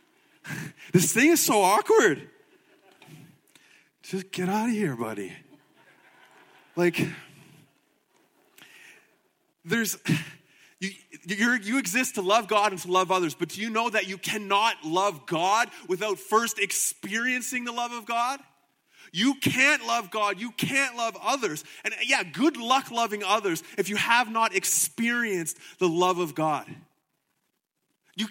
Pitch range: 160-220 Hz